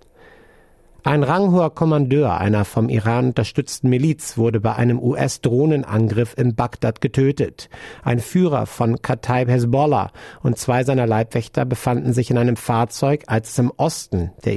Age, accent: 50-69, German